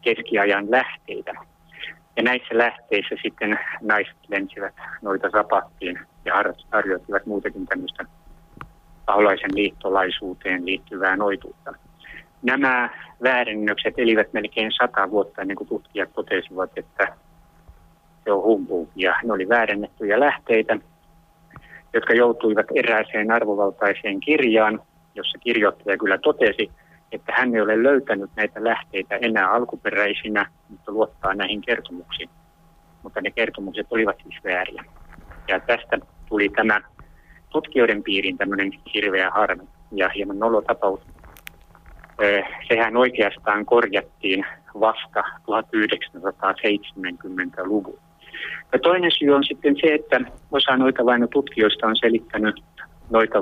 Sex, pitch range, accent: male, 100-120 Hz, native